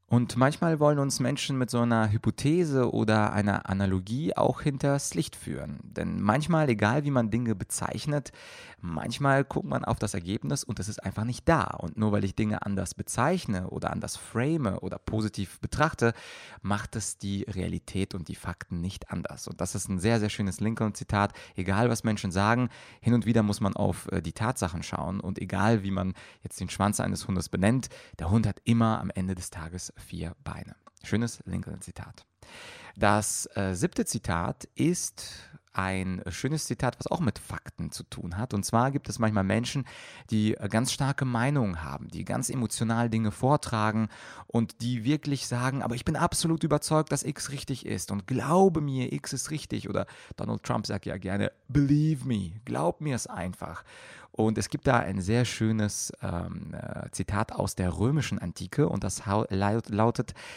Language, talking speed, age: German, 175 wpm, 30-49